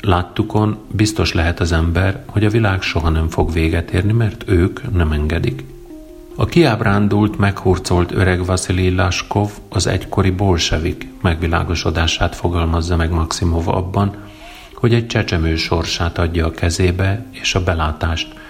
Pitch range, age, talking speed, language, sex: 85-105 Hz, 40-59, 130 wpm, Hungarian, male